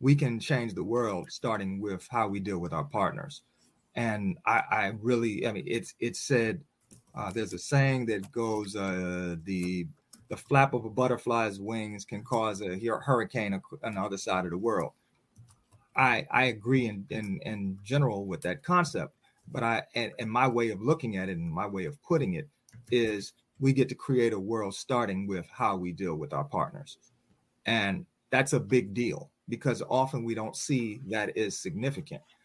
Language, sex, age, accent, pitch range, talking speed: English, male, 30-49, American, 105-135 Hz, 185 wpm